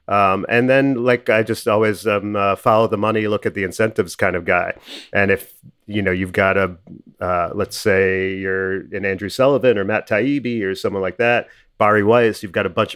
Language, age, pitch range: English, 40-59, 100-115 Hz